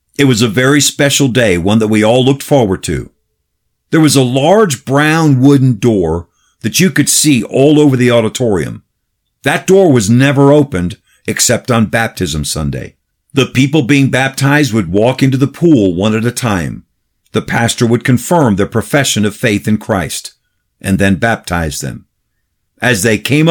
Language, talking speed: English, 170 wpm